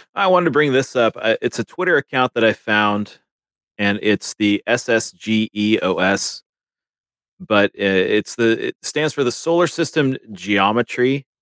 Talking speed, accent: 140 wpm, American